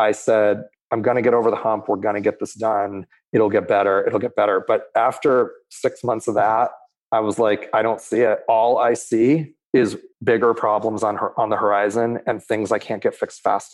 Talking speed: 225 wpm